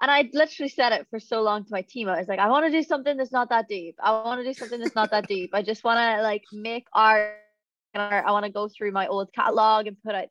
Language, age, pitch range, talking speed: English, 20-39, 195-235 Hz, 290 wpm